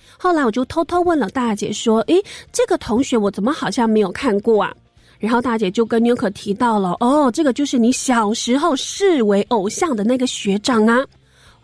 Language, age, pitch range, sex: Chinese, 20-39, 220-300 Hz, female